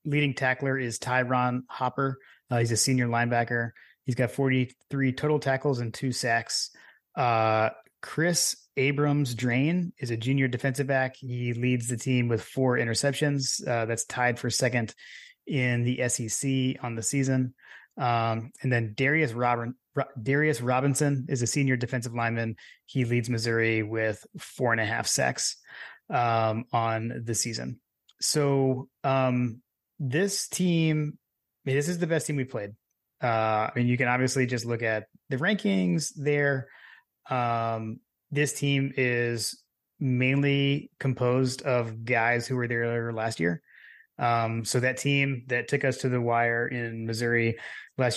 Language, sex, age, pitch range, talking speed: English, male, 30-49, 115-135 Hz, 150 wpm